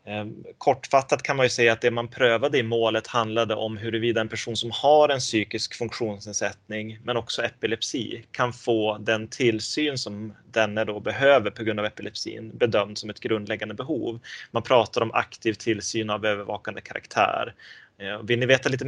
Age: 20-39